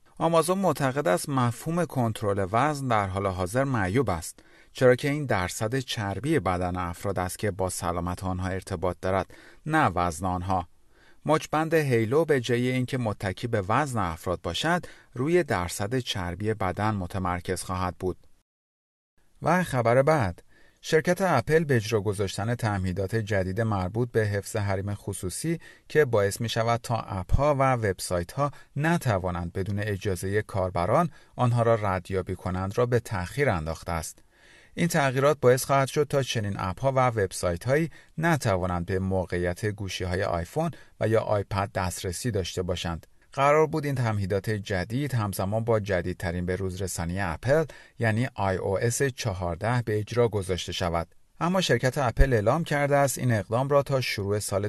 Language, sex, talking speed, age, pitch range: Persian, male, 155 wpm, 40-59, 95-130 Hz